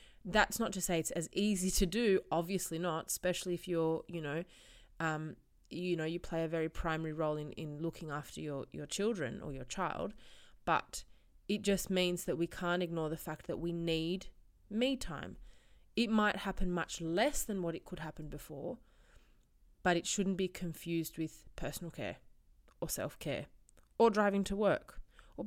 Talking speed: 180 wpm